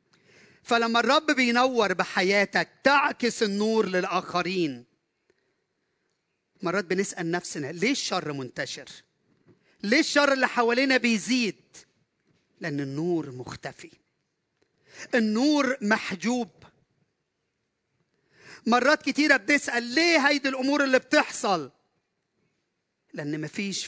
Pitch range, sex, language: 170-255 Hz, male, Arabic